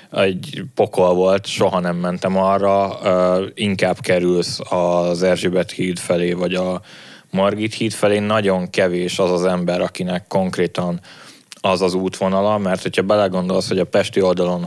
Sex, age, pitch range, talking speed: male, 20-39, 90-100 Hz, 145 wpm